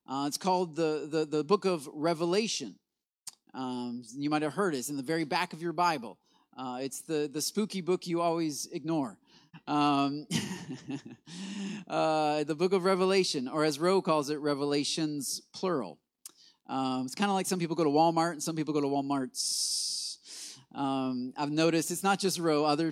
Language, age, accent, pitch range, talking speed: English, 30-49, American, 145-190 Hz, 180 wpm